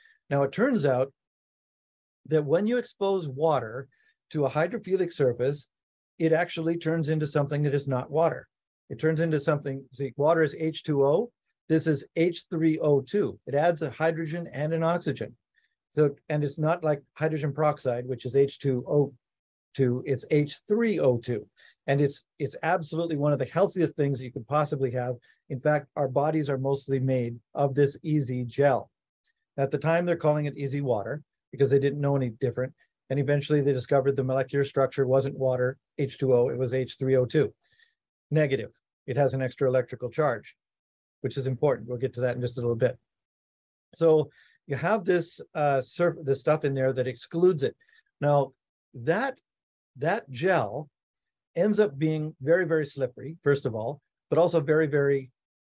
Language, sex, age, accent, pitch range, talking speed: English, male, 50-69, American, 135-160 Hz, 165 wpm